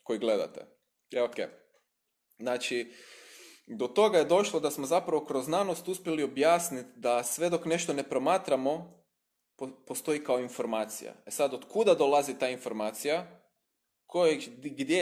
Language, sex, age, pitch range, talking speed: Croatian, male, 20-39, 120-165 Hz, 135 wpm